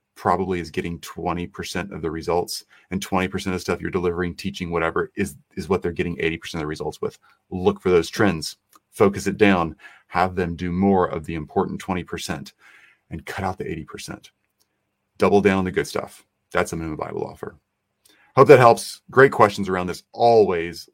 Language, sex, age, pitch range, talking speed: English, male, 30-49, 90-115 Hz, 185 wpm